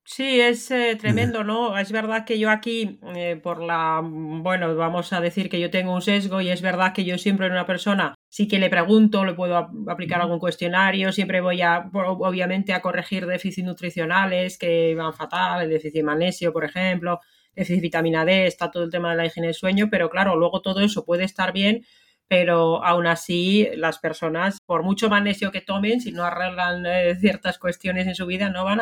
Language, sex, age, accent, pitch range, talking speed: Spanish, female, 30-49, Spanish, 175-210 Hz, 210 wpm